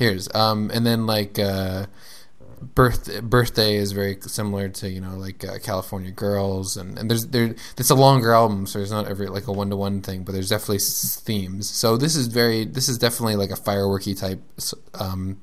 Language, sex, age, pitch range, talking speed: English, male, 20-39, 95-115 Hz, 200 wpm